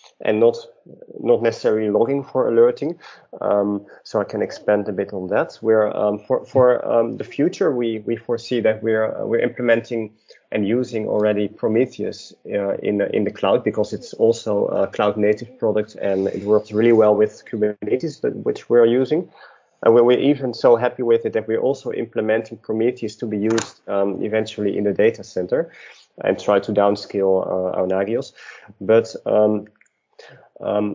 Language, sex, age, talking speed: English, male, 30-49, 170 wpm